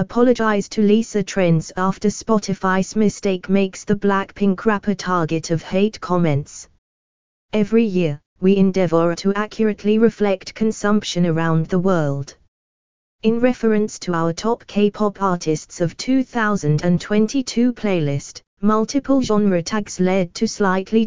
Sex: female